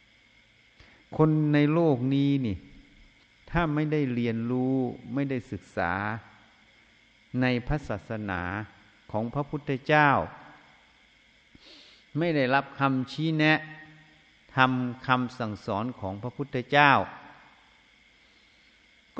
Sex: male